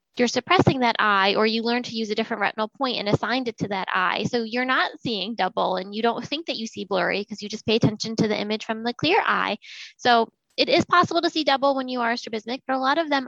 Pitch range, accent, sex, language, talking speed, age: 205-250 Hz, American, female, English, 270 wpm, 20-39